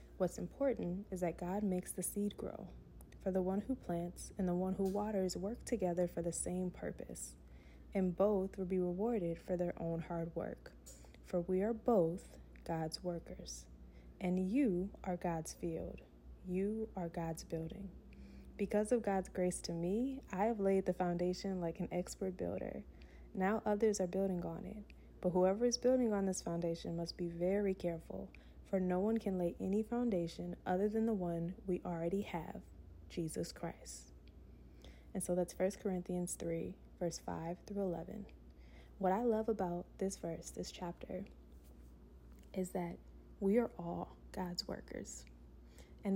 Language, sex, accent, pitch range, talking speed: English, female, American, 165-200 Hz, 160 wpm